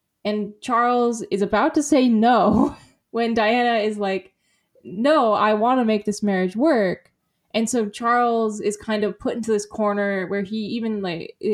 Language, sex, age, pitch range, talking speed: English, female, 10-29, 190-230 Hz, 170 wpm